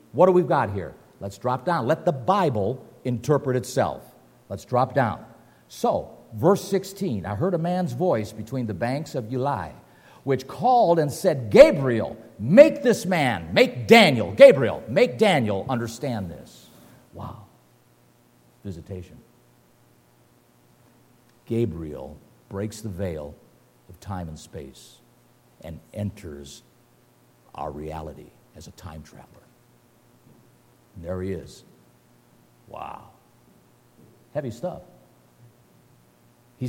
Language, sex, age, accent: English, male, 50-69, American